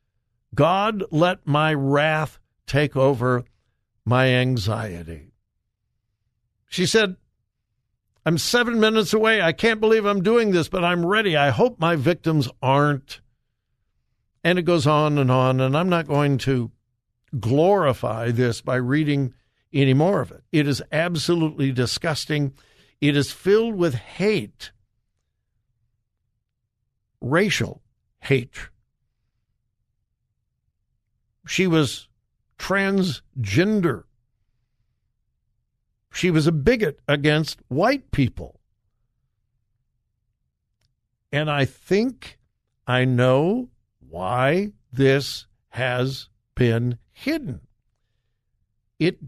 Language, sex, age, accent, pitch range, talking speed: English, male, 60-79, American, 115-160 Hz, 95 wpm